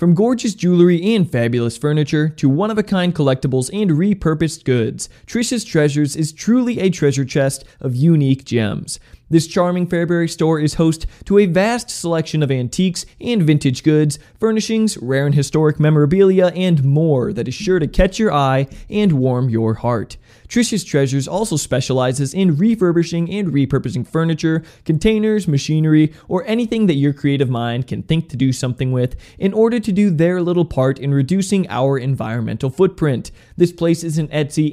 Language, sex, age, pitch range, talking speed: English, male, 20-39, 135-185 Hz, 165 wpm